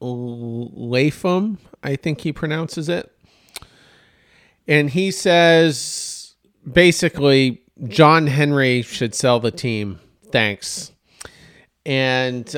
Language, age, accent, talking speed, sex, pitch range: English, 40-59, American, 90 wpm, male, 120-160 Hz